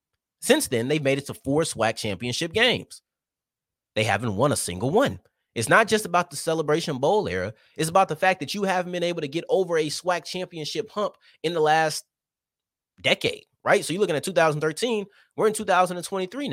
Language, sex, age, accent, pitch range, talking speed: English, male, 30-49, American, 145-210 Hz, 190 wpm